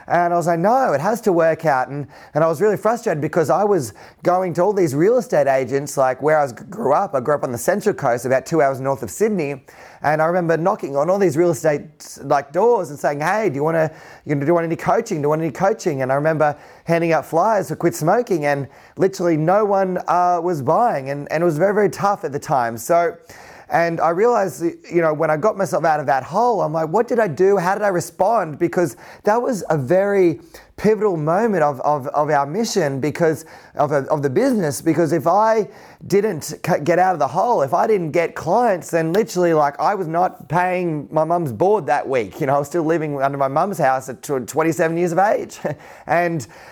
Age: 30-49